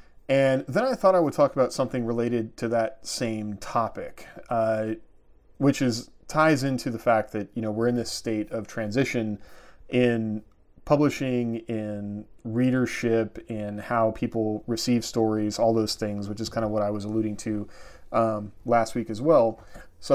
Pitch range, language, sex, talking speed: 110-125 Hz, English, male, 170 wpm